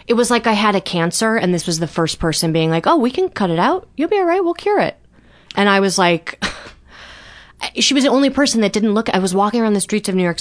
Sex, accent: female, American